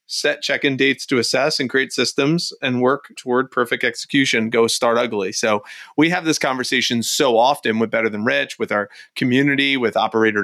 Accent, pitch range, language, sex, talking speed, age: American, 115-135 Hz, English, male, 185 wpm, 30-49